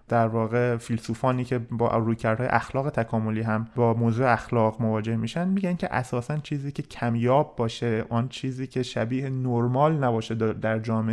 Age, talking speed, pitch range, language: 30-49, 155 wpm, 115-135 Hz, Persian